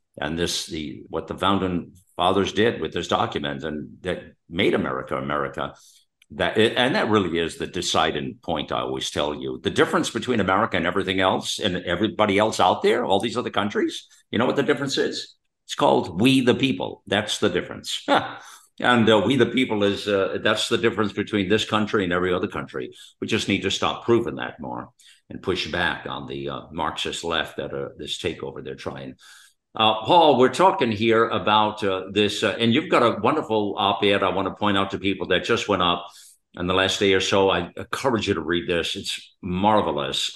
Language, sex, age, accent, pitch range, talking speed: English, male, 50-69, American, 90-110 Hz, 200 wpm